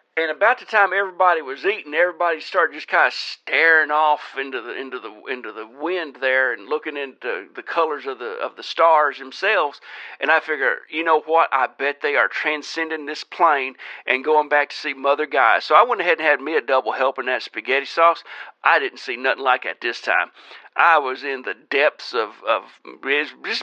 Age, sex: 50-69, male